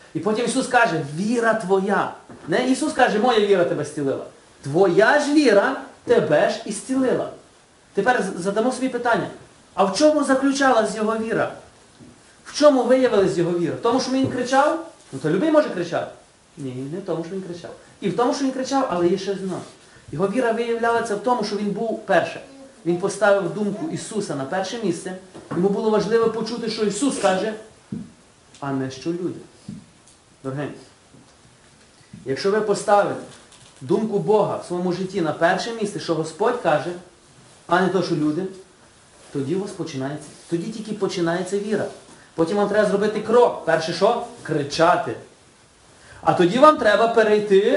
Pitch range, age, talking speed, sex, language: 165-225 Hz, 30-49, 160 wpm, male, Ukrainian